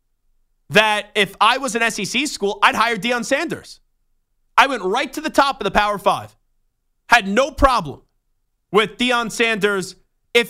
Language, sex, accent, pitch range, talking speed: English, male, American, 155-230 Hz, 160 wpm